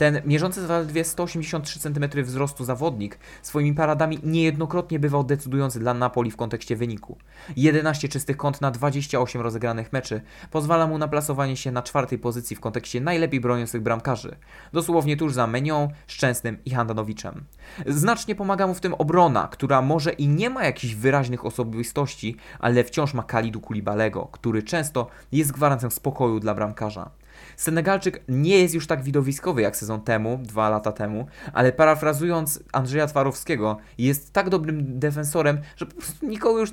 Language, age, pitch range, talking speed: Polish, 20-39, 120-160 Hz, 155 wpm